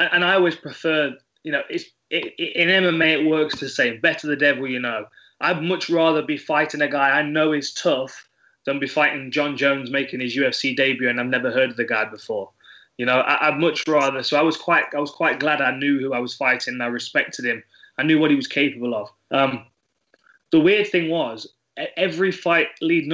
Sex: male